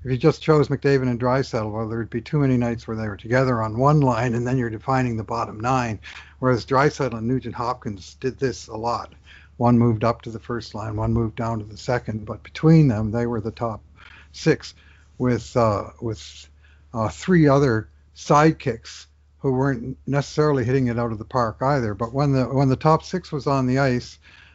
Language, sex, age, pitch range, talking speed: English, male, 60-79, 110-140 Hz, 210 wpm